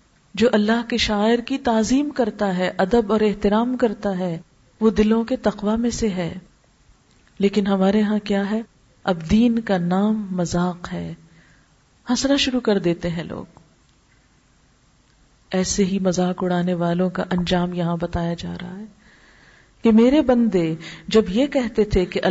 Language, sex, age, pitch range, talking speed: Urdu, female, 40-59, 175-225 Hz, 155 wpm